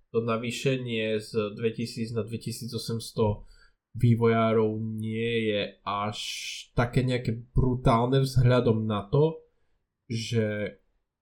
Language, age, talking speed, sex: Slovak, 10-29, 90 wpm, male